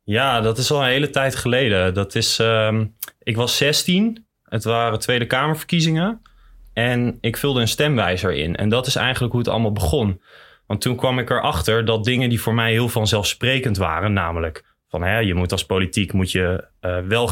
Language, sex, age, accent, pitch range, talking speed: Dutch, male, 20-39, Dutch, 100-130 Hz, 195 wpm